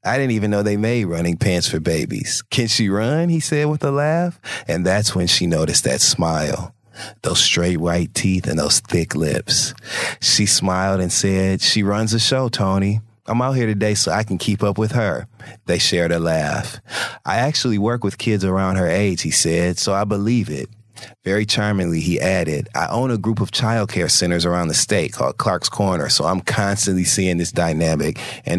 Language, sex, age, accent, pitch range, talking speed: English, male, 30-49, American, 85-110 Hz, 200 wpm